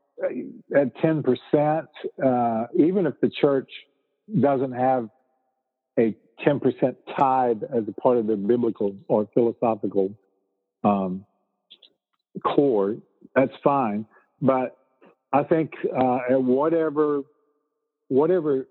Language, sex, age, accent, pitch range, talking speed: English, male, 50-69, American, 110-145 Hz, 105 wpm